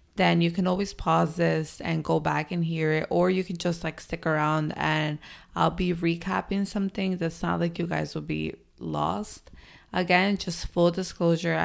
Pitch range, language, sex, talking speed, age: 155-175 Hz, English, female, 185 wpm, 20-39